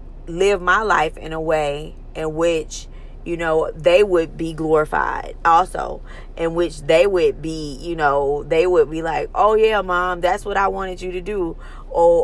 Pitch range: 165-195 Hz